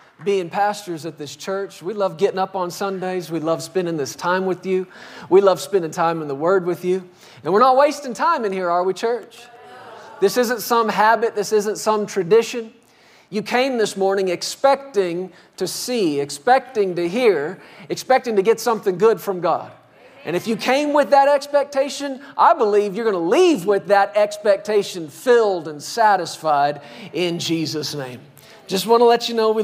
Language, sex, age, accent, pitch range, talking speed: English, male, 40-59, American, 175-225 Hz, 185 wpm